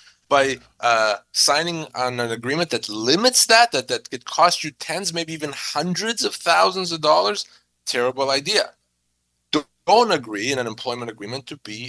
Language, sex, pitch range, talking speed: English, male, 120-165 Hz, 160 wpm